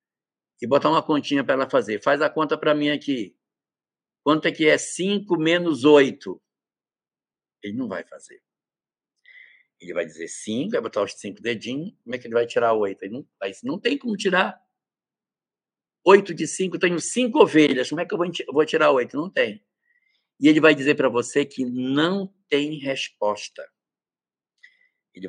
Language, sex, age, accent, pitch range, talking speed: Portuguese, male, 60-79, Brazilian, 150-240 Hz, 180 wpm